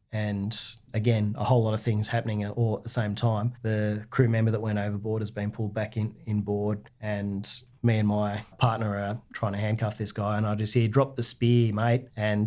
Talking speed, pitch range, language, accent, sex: 220 wpm, 105-120 Hz, English, Australian, male